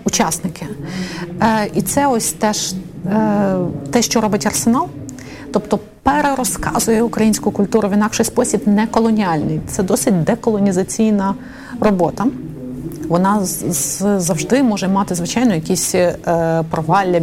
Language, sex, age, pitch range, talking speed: Ukrainian, female, 30-49, 180-220 Hz, 110 wpm